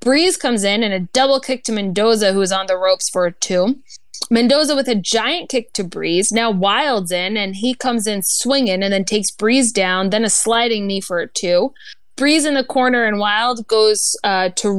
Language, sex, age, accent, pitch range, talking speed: English, female, 20-39, American, 195-255 Hz, 215 wpm